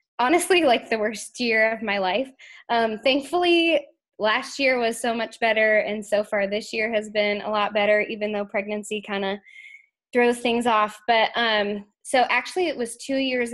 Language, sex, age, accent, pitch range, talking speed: English, female, 10-29, American, 205-250 Hz, 185 wpm